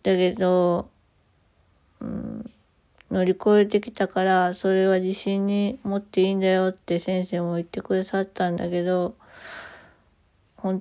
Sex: female